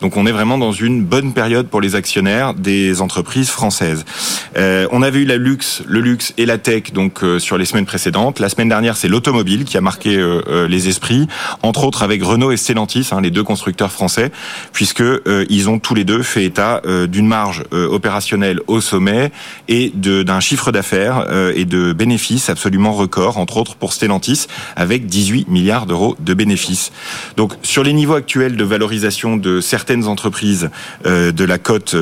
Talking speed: 195 wpm